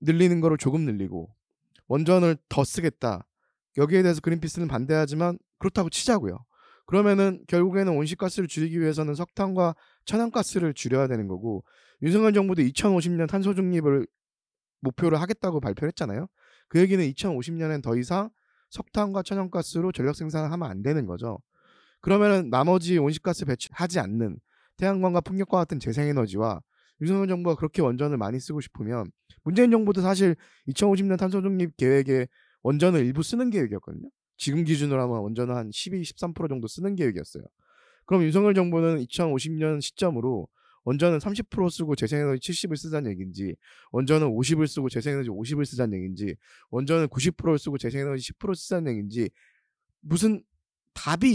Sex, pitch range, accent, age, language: male, 130-185 Hz, native, 20-39, Korean